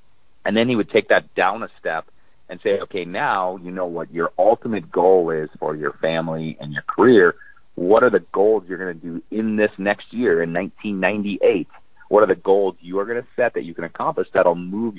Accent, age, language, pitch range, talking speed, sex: American, 40-59, English, 90-110 Hz, 225 wpm, male